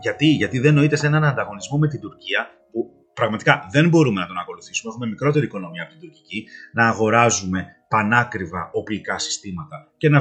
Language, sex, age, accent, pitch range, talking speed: Greek, male, 30-49, native, 120-155 Hz, 175 wpm